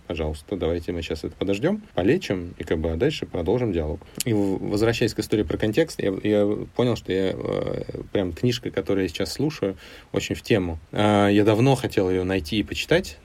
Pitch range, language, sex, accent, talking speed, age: 95-120 Hz, Russian, male, native, 180 wpm, 30-49